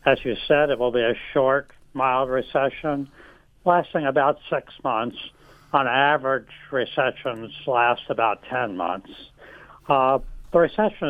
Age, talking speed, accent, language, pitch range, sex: 70-89, 130 wpm, American, English, 125-145 Hz, male